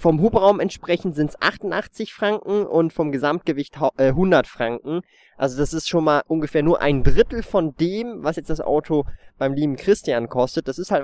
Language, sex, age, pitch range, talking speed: German, male, 20-39, 135-170 Hz, 185 wpm